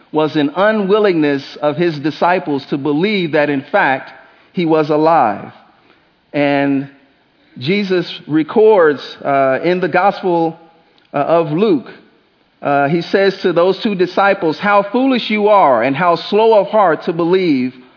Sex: male